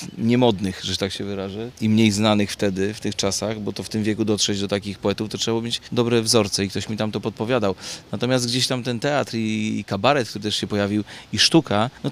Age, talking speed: 30-49, 235 wpm